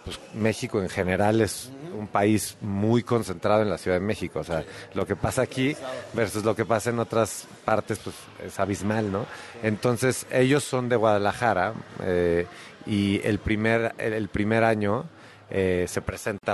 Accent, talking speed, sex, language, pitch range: Mexican, 165 wpm, male, Spanish, 100-120 Hz